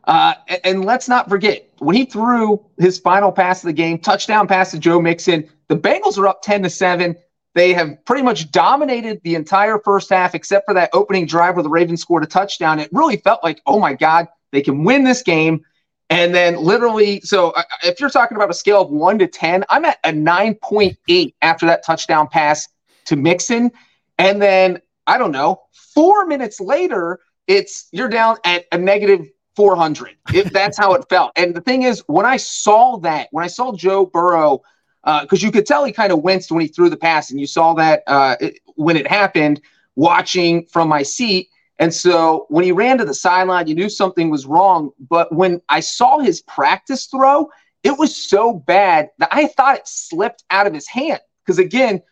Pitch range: 170-225 Hz